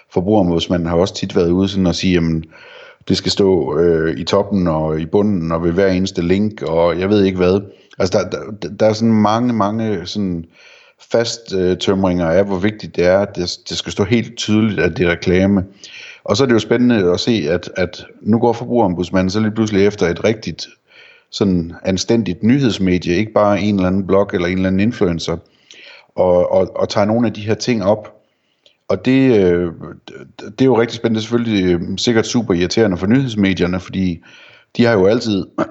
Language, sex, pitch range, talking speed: Danish, male, 90-105 Hz, 200 wpm